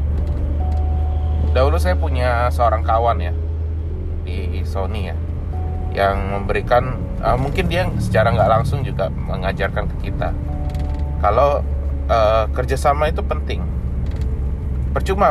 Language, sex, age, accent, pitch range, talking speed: Indonesian, male, 20-39, native, 80-115 Hz, 105 wpm